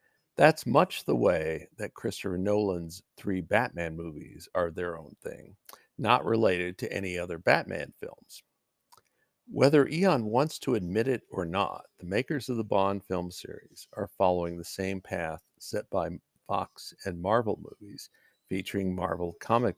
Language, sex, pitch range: English, male, 90-105 Hz